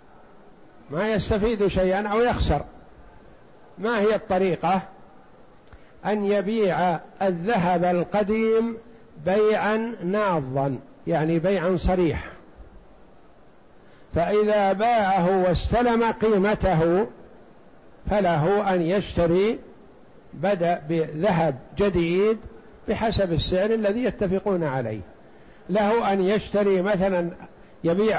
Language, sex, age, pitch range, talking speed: Arabic, male, 60-79, 170-210 Hz, 80 wpm